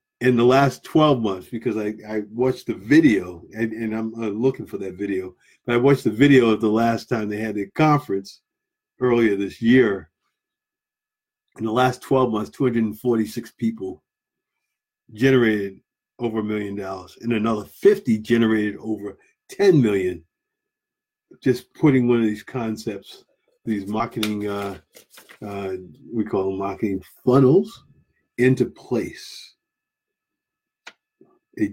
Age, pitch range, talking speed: 50-69, 105-145 Hz, 135 wpm